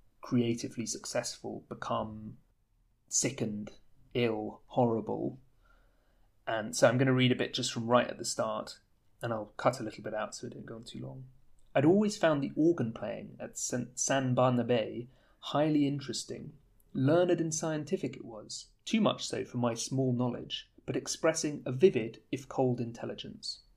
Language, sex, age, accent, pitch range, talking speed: English, male, 30-49, British, 110-135 Hz, 165 wpm